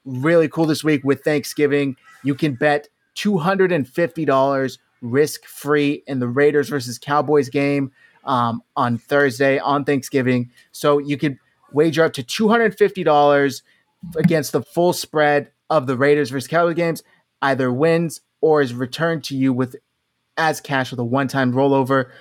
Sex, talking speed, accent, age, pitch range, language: male, 145 wpm, American, 20-39, 135-160 Hz, English